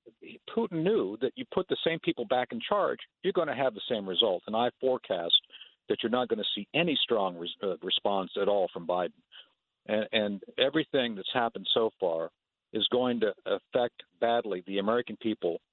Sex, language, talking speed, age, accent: male, English, 175 wpm, 50-69, American